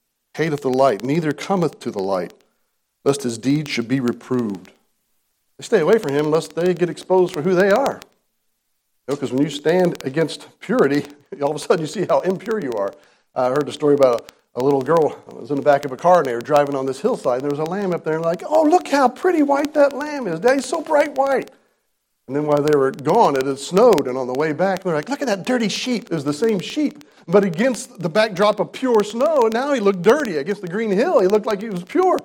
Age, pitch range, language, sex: 50-69, 150-225 Hz, English, male